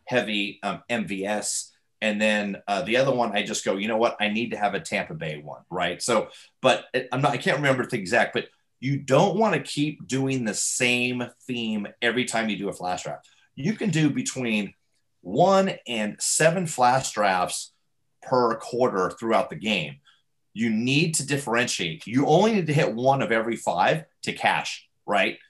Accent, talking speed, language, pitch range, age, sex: American, 190 wpm, English, 110-140 Hz, 30-49, male